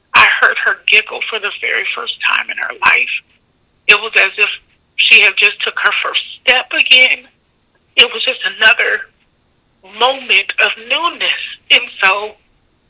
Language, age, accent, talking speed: English, 30-49, American, 155 wpm